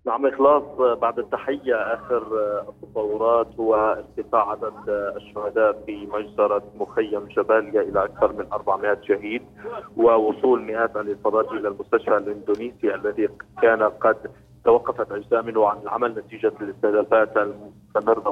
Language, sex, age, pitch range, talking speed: Arabic, male, 30-49, 105-120 Hz, 120 wpm